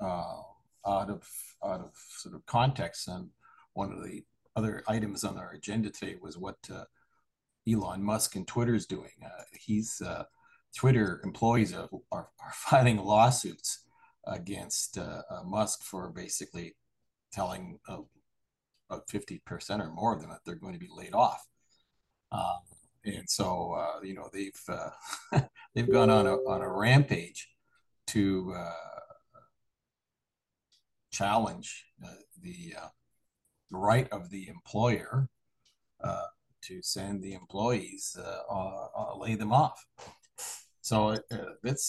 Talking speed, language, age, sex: 140 wpm, English, 50-69, male